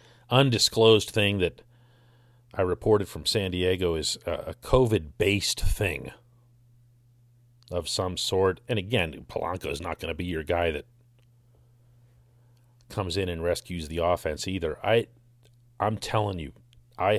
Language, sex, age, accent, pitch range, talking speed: English, male, 40-59, American, 95-120 Hz, 135 wpm